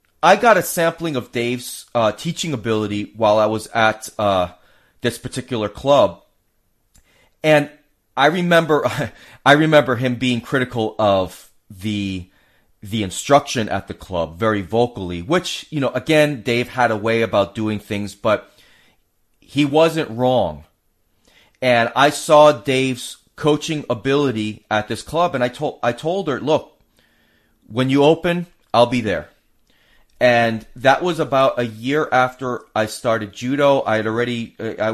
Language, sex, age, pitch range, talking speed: English, male, 30-49, 105-145 Hz, 145 wpm